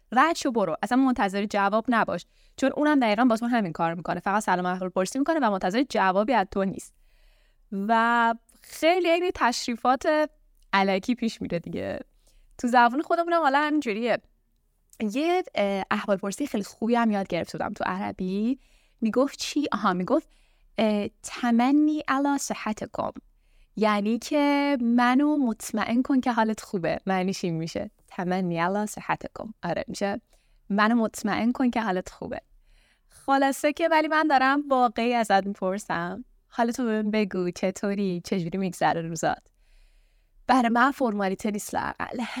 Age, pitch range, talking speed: 10-29, 195-265 Hz, 135 wpm